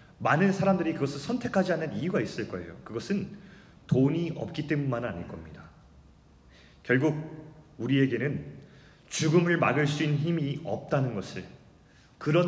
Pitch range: 120-165 Hz